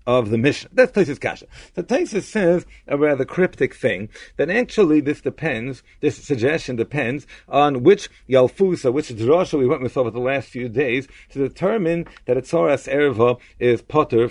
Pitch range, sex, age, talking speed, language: 120-165 Hz, male, 50-69, 170 wpm, English